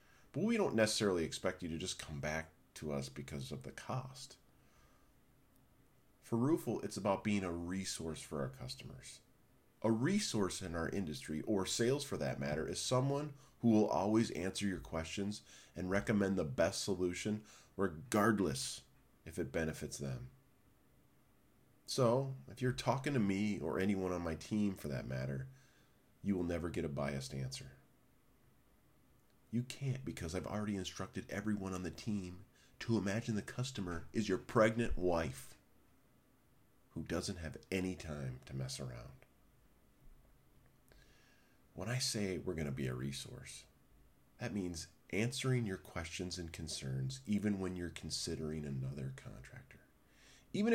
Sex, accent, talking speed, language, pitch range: male, American, 145 wpm, English, 80-115 Hz